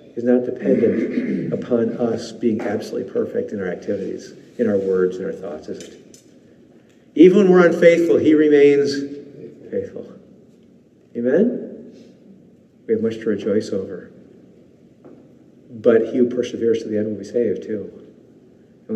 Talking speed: 140 wpm